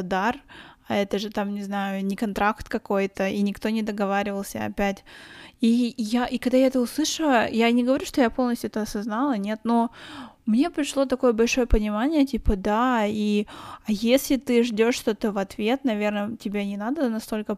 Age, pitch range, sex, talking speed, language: 20-39, 205-245 Hz, female, 180 wpm, Russian